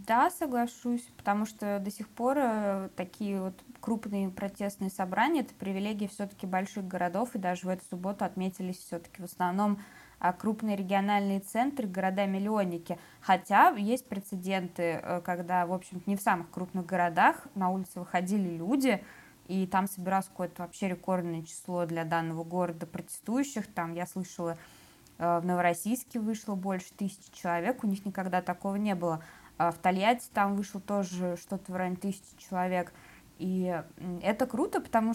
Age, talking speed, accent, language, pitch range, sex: 20-39, 145 wpm, native, Russian, 180-215 Hz, female